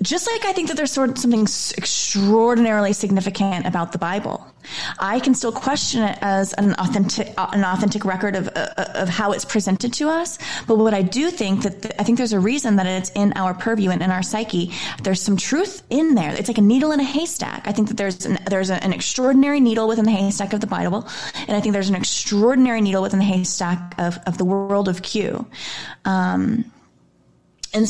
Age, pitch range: 20-39, 190-240 Hz